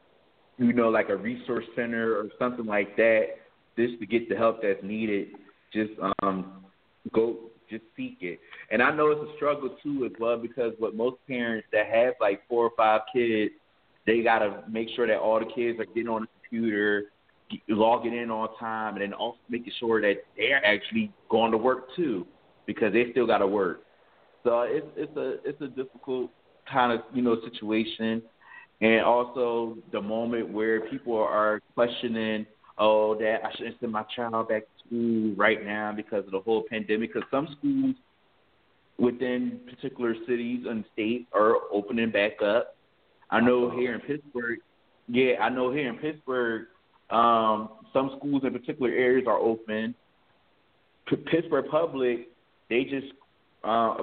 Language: English